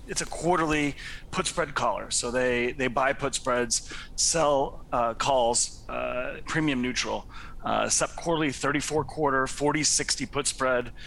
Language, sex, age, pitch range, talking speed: English, male, 30-49, 125-150 Hz, 140 wpm